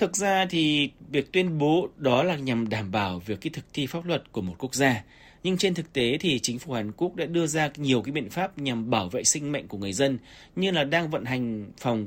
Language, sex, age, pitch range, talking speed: Vietnamese, male, 20-39, 115-160 Hz, 255 wpm